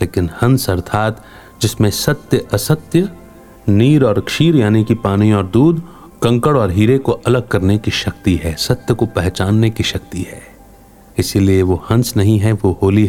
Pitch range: 100-125 Hz